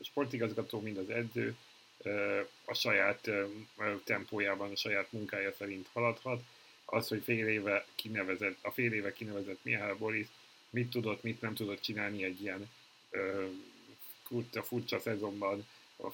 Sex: male